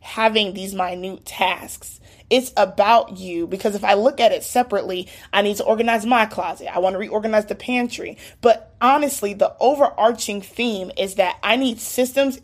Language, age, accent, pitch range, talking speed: English, 20-39, American, 195-260 Hz, 175 wpm